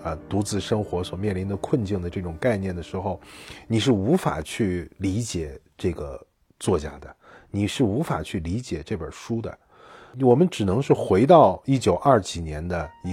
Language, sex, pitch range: Chinese, male, 90-125 Hz